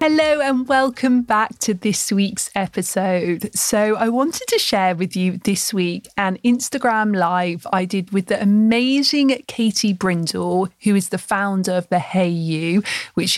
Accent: British